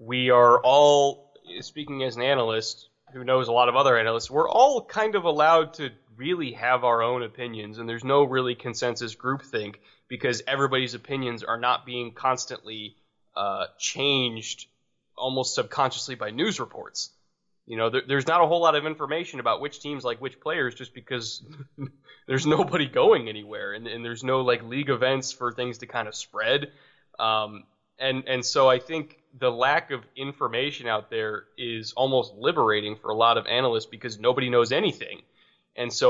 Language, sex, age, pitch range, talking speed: English, male, 20-39, 115-135 Hz, 175 wpm